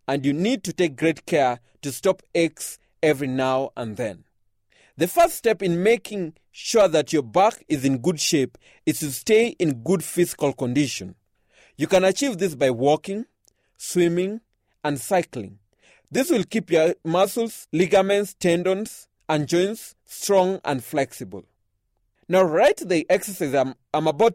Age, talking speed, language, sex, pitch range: 30-49, 155 wpm, English, male, 130-190 Hz